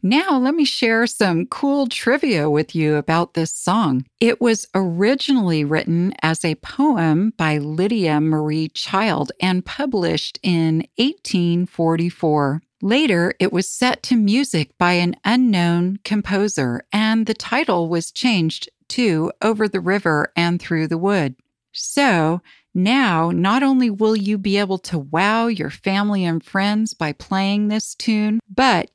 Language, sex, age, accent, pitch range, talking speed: English, female, 50-69, American, 165-230 Hz, 145 wpm